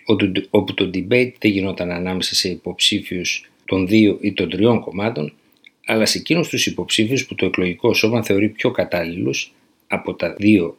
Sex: male